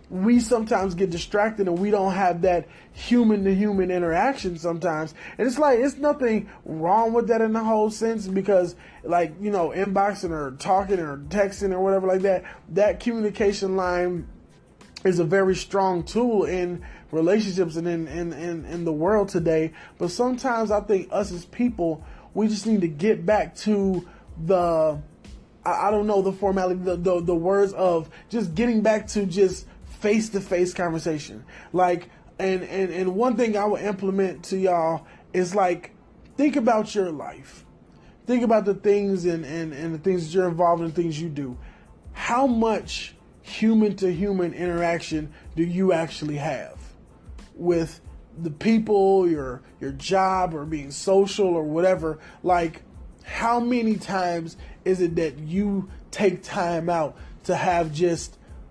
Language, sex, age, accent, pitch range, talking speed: English, male, 20-39, American, 170-205 Hz, 160 wpm